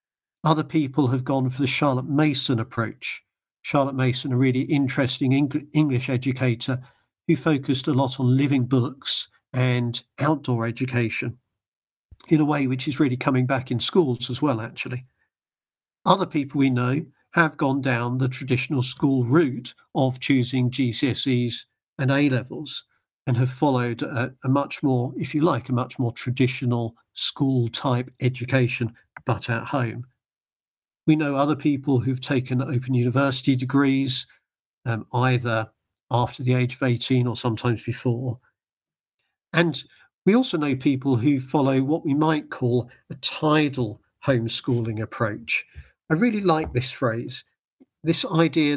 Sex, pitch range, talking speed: male, 125-145 Hz, 140 wpm